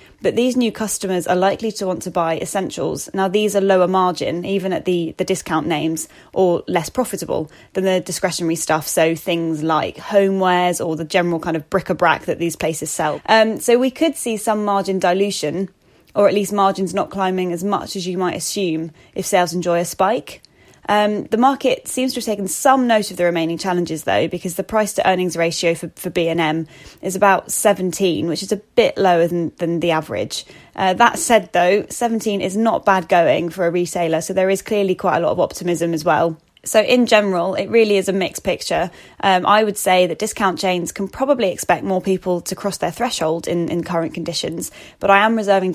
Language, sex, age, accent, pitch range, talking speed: English, female, 10-29, British, 170-200 Hz, 210 wpm